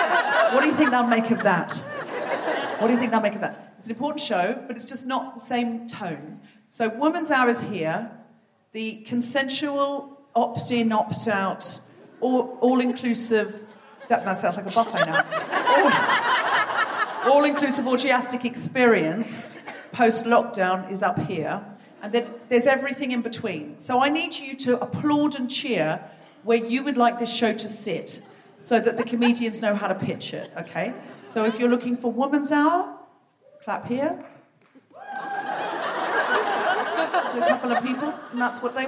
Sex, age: female, 40-59